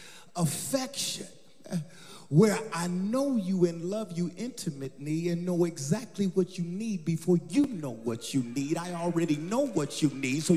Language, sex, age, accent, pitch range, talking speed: English, male, 40-59, American, 145-195 Hz, 160 wpm